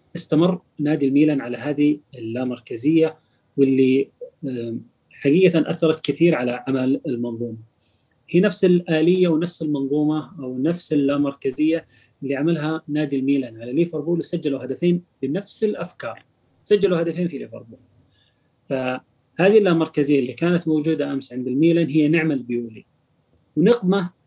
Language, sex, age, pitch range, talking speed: Arabic, male, 30-49, 130-165 Hz, 115 wpm